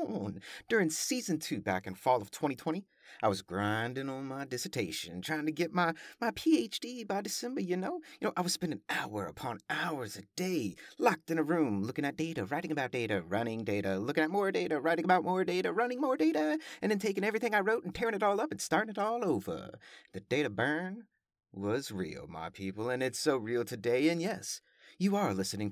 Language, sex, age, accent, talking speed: English, male, 30-49, American, 210 wpm